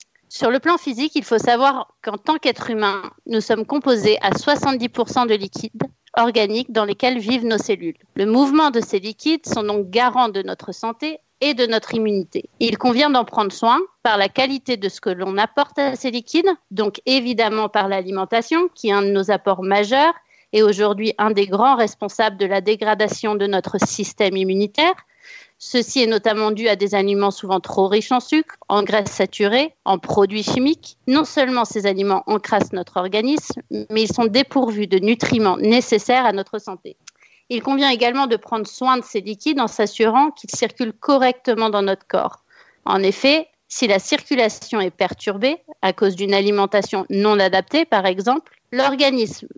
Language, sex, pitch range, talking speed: French, female, 205-265 Hz, 180 wpm